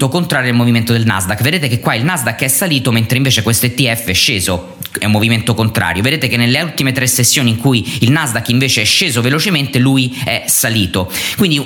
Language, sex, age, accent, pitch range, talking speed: Italian, male, 20-39, native, 110-145 Hz, 205 wpm